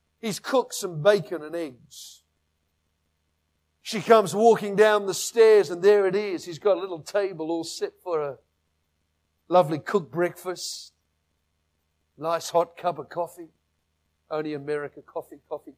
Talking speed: 140 wpm